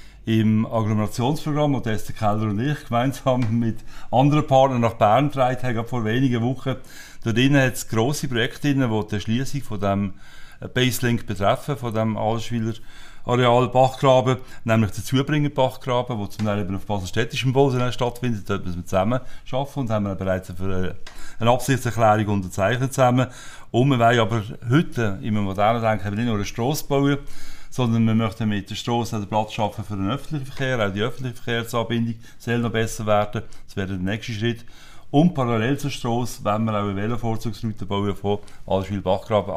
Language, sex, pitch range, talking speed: German, male, 105-130 Hz, 170 wpm